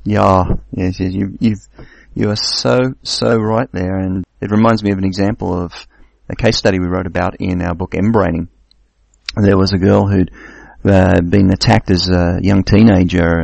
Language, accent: English, Australian